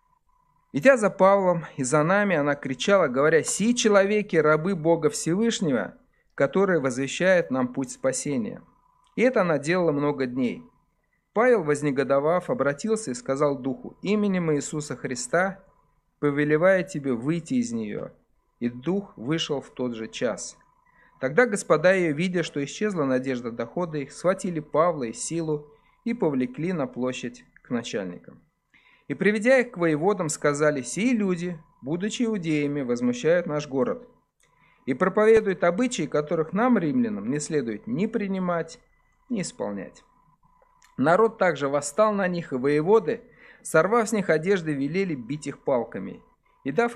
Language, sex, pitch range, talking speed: Russian, male, 145-215 Hz, 135 wpm